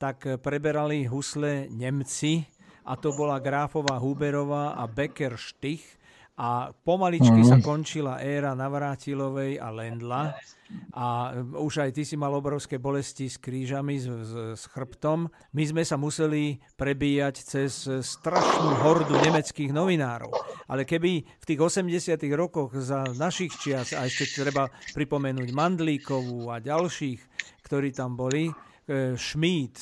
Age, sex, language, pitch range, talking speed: 50-69, male, Slovak, 135-160 Hz, 130 wpm